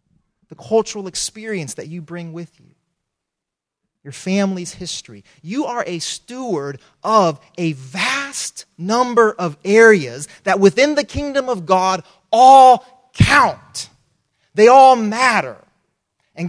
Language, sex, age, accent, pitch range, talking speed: English, male, 30-49, American, 135-195 Hz, 120 wpm